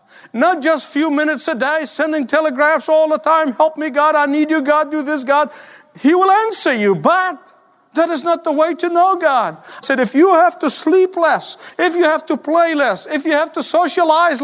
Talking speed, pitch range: 225 wpm, 225-325 Hz